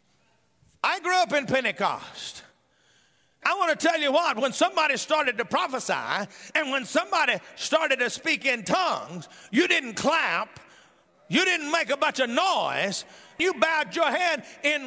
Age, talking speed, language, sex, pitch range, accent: 50-69, 155 wpm, English, male, 280-330 Hz, American